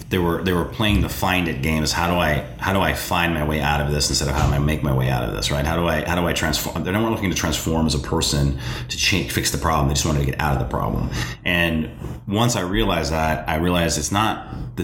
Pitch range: 75-95 Hz